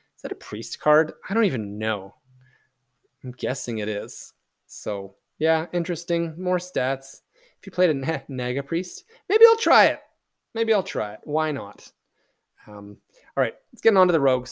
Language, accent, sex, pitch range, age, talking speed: English, American, male, 120-160 Hz, 20-39, 180 wpm